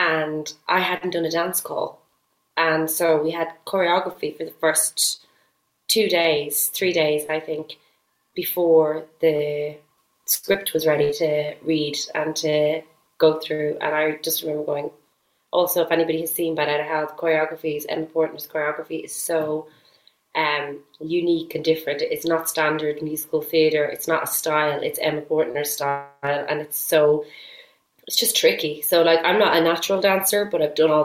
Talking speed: 165 wpm